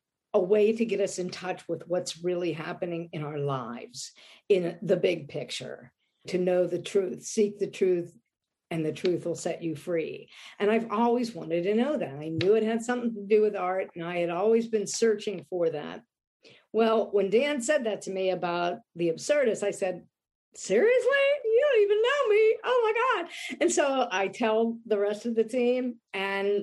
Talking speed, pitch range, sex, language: 195 wpm, 180-235 Hz, female, English